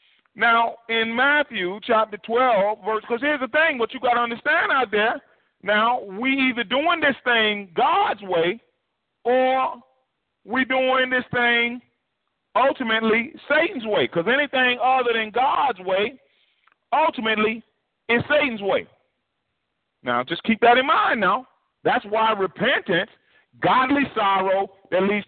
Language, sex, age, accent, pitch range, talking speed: English, male, 40-59, American, 210-260 Hz, 135 wpm